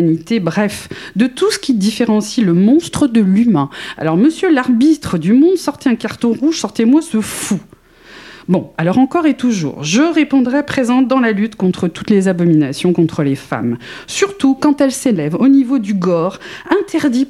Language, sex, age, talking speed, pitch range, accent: French, female, 40-59, 170 wpm, 180-265 Hz, French